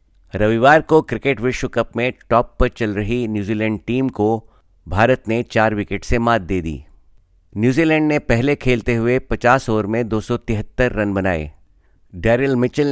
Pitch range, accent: 100-125 Hz, native